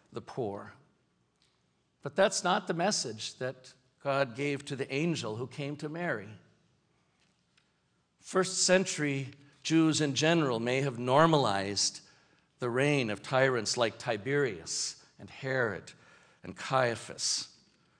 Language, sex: English, male